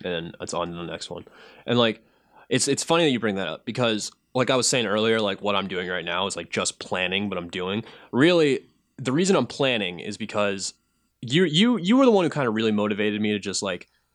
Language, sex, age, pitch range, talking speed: English, male, 20-39, 105-140 Hz, 245 wpm